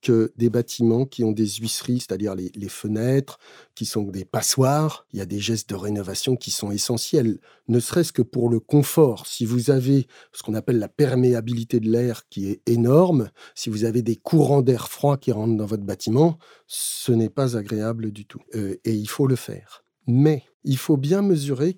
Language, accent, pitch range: French, French, 115-155 Hz